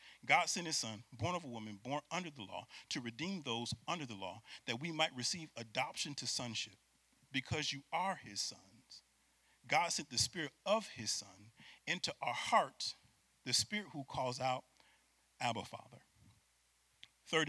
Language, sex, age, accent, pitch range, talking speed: English, male, 40-59, American, 100-140 Hz, 165 wpm